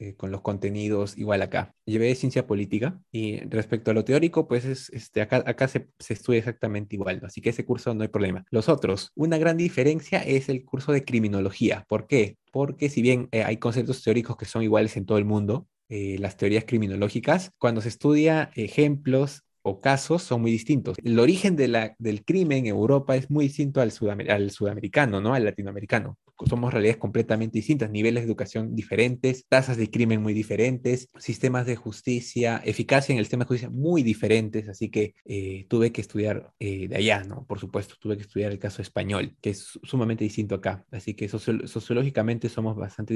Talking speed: 195 wpm